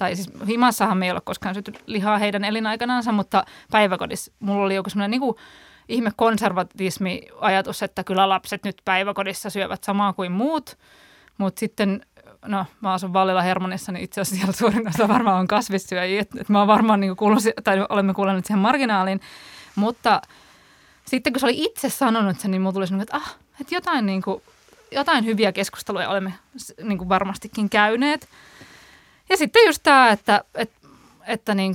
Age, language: 20-39, Finnish